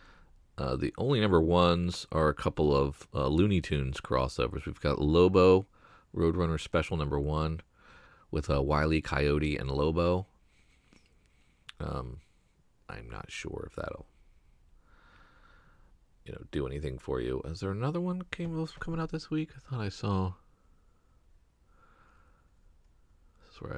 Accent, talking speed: American, 140 wpm